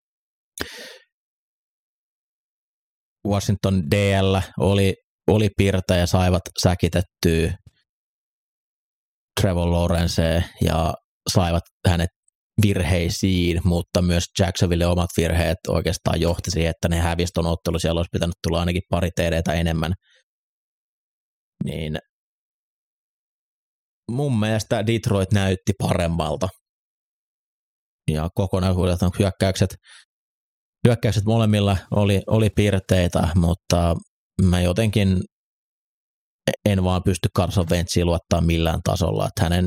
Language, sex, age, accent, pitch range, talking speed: Finnish, male, 30-49, native, 85-100 Hz, 90 wpm